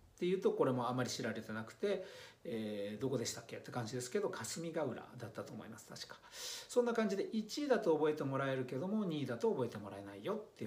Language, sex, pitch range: Japanese, male, 125-195 Hz